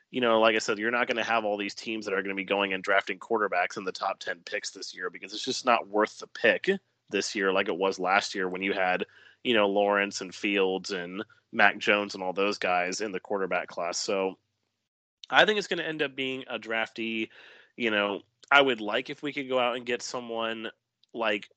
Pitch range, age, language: 100-125 Hz, 30-49, English